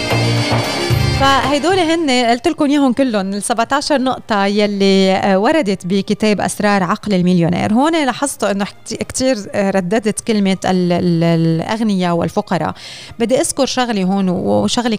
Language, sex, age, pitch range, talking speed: Arabic, female, 20-39, 185-230 Hz, 115 wpm